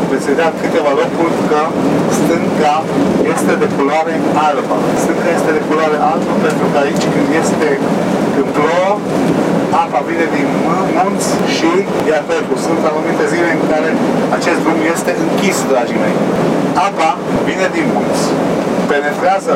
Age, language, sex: 50-69, Romanian, male